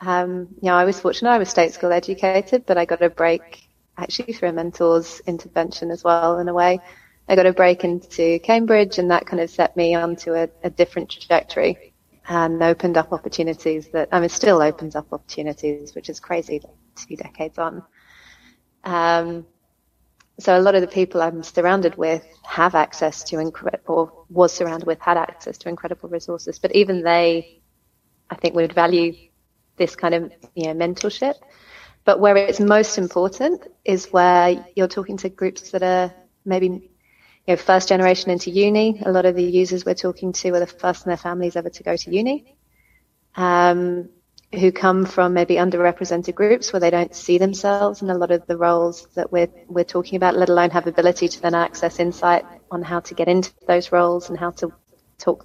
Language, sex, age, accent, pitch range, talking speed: English, female, 30-49, British, 170-185 Hz, 190 wpm